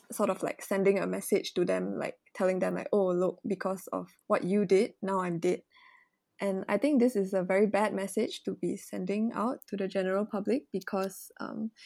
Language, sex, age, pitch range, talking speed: Malay, female, 20-39, 190-220 Hz, 210 wpm